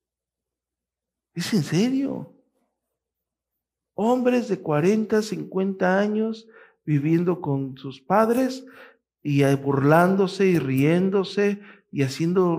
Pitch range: 130-180 Hz